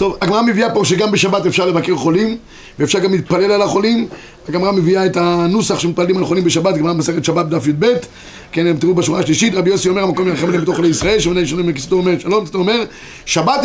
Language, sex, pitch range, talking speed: Hebrew, male, 175-230 Hz, 210 wpm